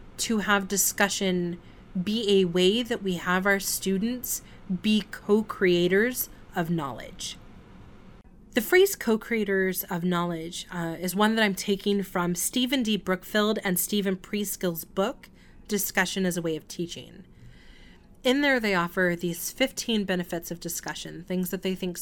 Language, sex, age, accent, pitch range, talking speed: English, female, 30-49, American, 180-215 Hz, 145 wpm